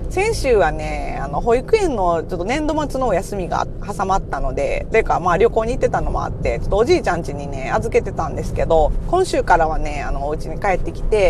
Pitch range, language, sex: 145-235 Hz, Japanese, female